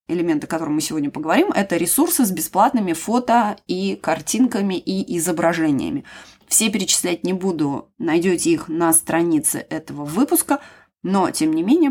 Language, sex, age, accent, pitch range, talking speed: Russian, female, 20-39, native, 165-235 Hz, 145 wpm